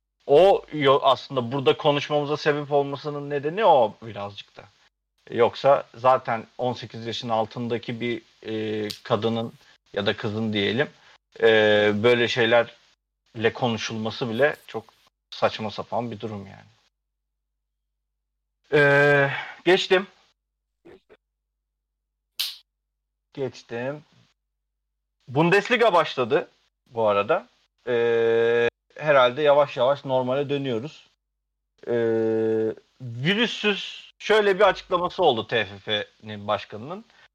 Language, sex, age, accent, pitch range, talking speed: Turkish, male, 40-59, native, 110-150 Hz, 90 wpm